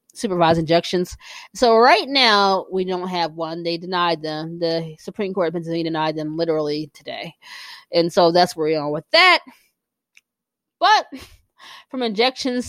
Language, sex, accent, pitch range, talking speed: English, female, American, 175-250 Hz, 150 wpm